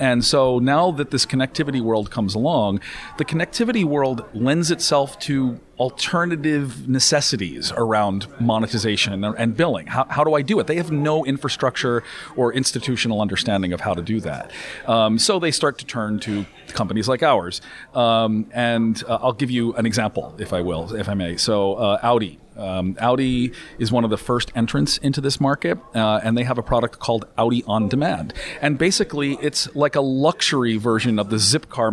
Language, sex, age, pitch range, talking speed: English, male, 40-59, 110-140 Hz, 180 wpm